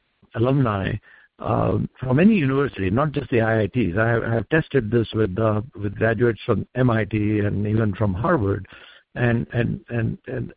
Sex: male